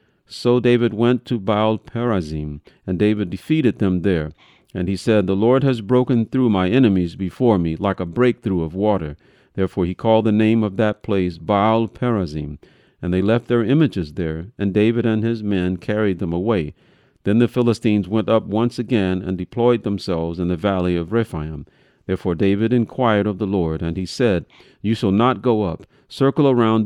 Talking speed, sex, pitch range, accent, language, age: 180 wpm, male, 95-120 Hz, American, English, 50-69